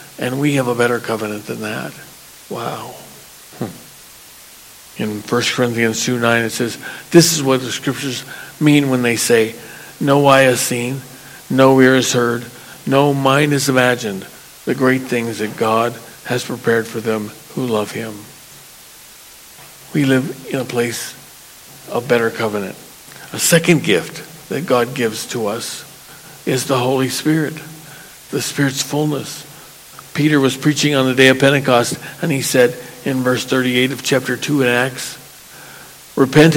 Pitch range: 125-150 Hz